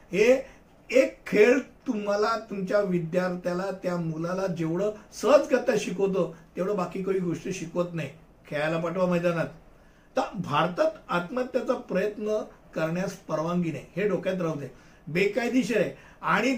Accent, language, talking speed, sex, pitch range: native, Hindi, 80 wpm, male, 180-240 Hz